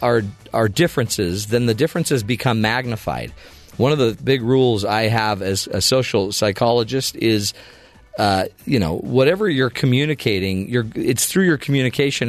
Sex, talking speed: male, 150 wpm